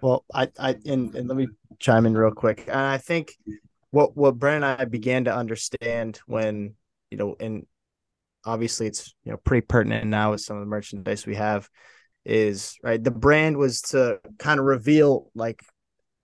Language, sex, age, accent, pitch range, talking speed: English, male, 20-39, American, 110-135 Hz, 185 wpm